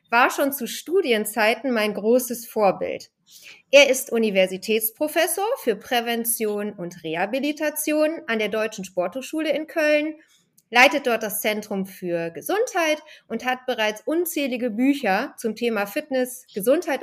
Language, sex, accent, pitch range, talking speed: German, female, German, 215-295 Hz, 125 wpm